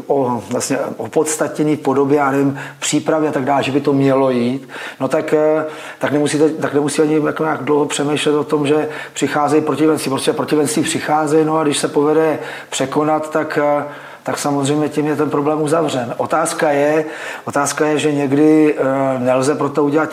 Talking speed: 165 wpm